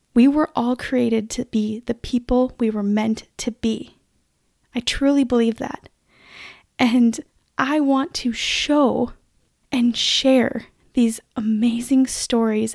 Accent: American